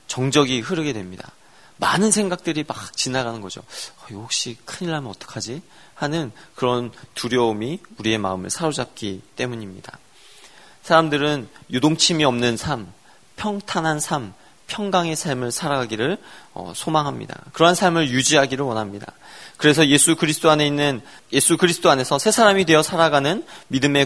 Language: Korean